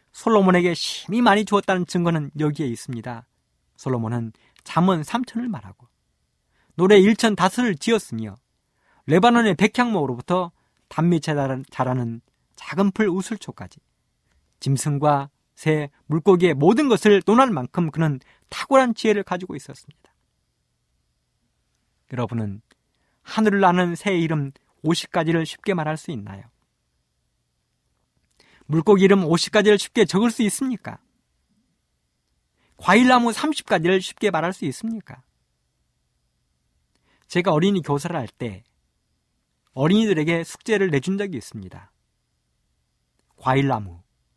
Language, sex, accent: Korean, male, native